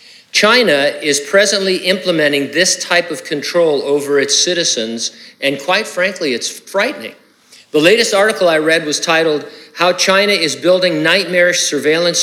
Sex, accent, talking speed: male, American, 140 wpm